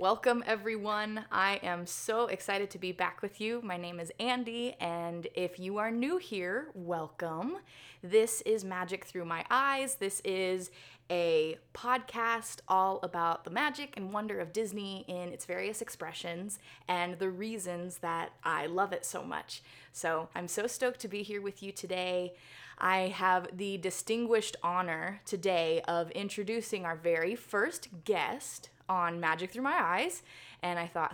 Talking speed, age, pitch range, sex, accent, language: 160 wpm, 20-39, 175-225 Hz, female, American, English